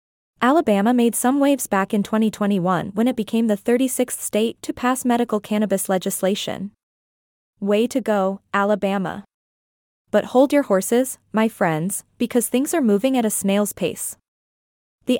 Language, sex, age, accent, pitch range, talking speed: English, female, 20-39, American, 200-245 Hz, 145 wpm